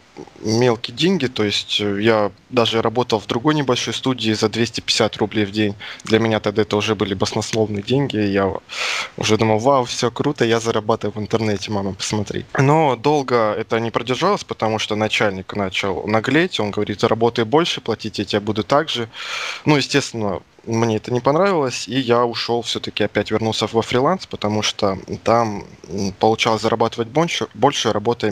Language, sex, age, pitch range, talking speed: Russian, male, 20-39, 105-125 Hz, 165 wpm